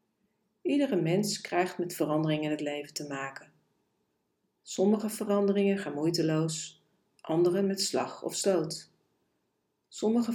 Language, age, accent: Dutch, 40-59, Dutch